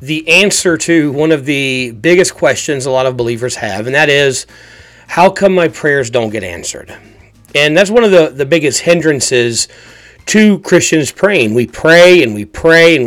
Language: English